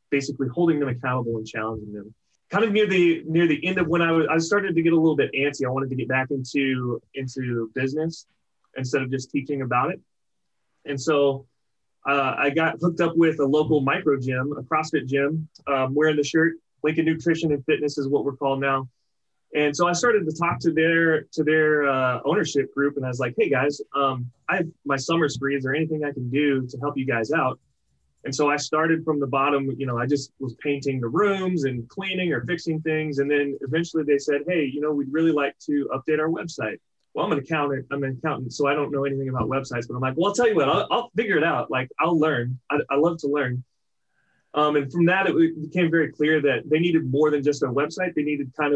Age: 30-49